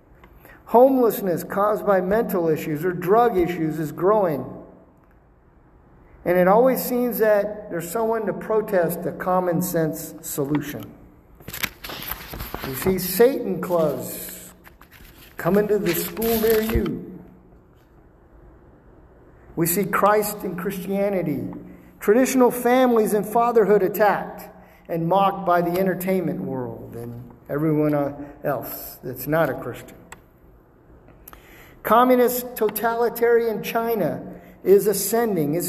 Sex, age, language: male, 50-69, English